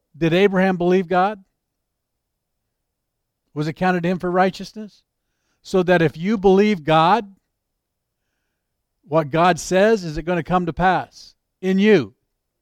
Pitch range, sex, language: 125-185 Hz, male, English